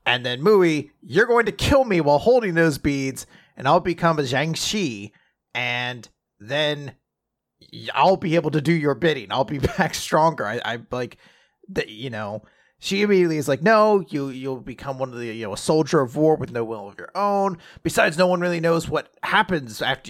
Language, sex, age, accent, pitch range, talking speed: English, male, 30-49, American, 125-195 Hz, 205 wpm